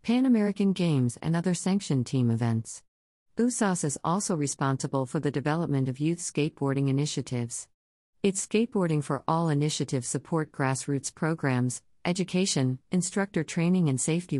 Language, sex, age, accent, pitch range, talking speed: English, female, 50-69, American, 130-160 Hz, 135 wpm